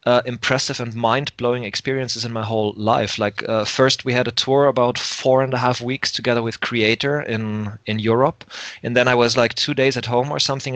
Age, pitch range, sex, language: 20-39, 115-140 Hz, male, English